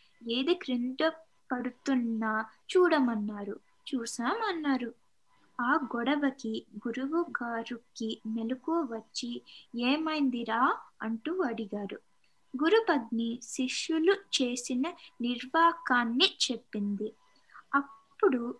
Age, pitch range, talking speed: 20-39, 230-325 Hz, 60 wpm